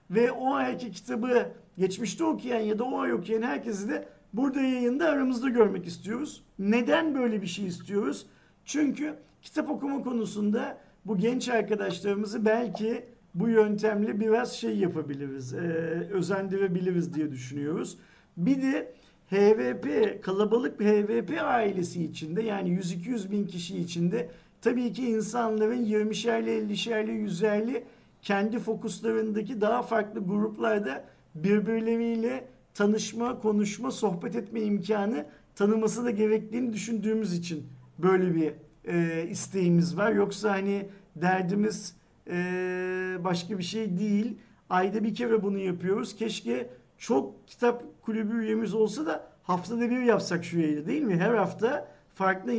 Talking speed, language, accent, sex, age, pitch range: 125 wpm, Turkish, native, male, 50-69, 185-230 Hz